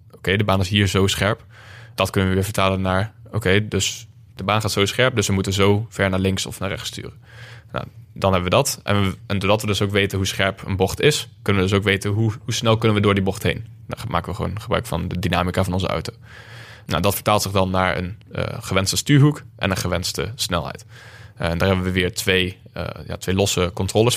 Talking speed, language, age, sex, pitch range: 240 wpm, Dutch, 10-29, male, 95-115 Hz